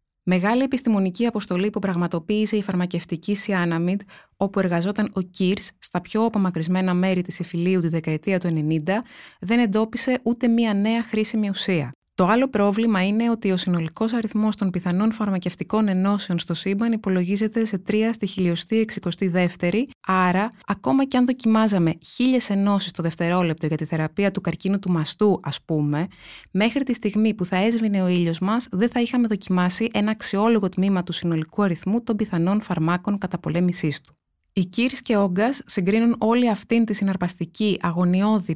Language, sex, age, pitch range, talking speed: Greek, female, 20-39, 175-220 Hz, 155 wpm